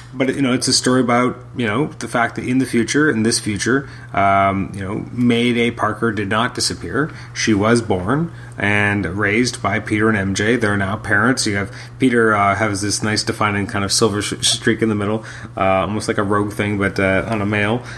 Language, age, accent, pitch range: English, 30-49, American, 100-120 Hz